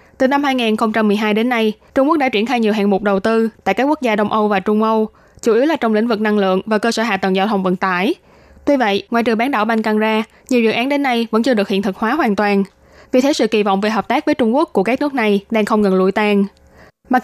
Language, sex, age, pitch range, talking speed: Vietnamese, female, 20-39, 205-250 Hz, 290 wpm